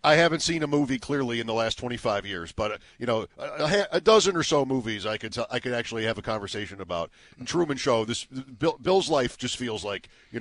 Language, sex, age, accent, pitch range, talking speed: English, male, 50-69, American, 115-165 Hz, 240 wpm